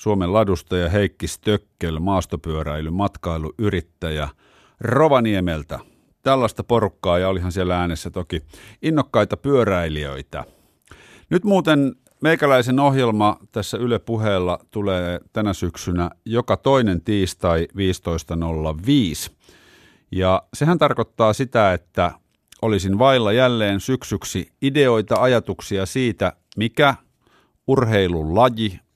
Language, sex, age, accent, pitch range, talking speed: Finnish, male, 50-69, native, 85-115 Hz, 85 wpm